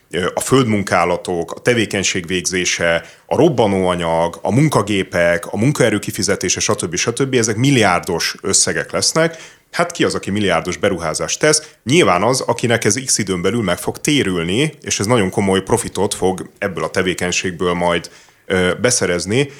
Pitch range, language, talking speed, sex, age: 90-125 Hz, Hungarian, 140 wpm, male, 30-49